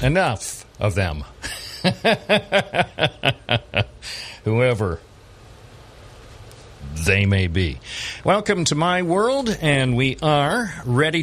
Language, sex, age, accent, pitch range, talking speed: English, male, 50-69, American, 95-120 Hz, 80 wpm